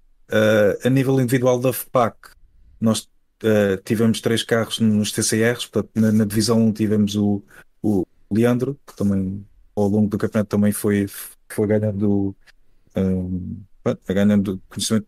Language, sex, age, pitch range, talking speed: Portuguese, male, 20-39, 100-110 Hz, 145 wpm